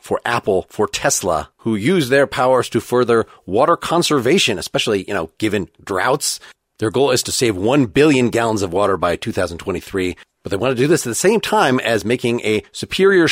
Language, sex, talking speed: English, male, 195 wpm